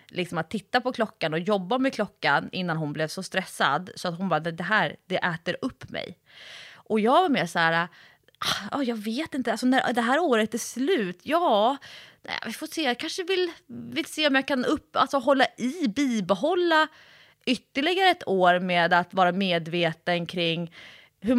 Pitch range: 180-245 Hz